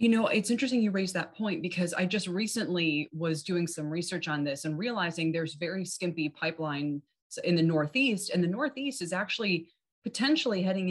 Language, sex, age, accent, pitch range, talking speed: English, female, 20-39, American, 160-200 Hz, 185 wpm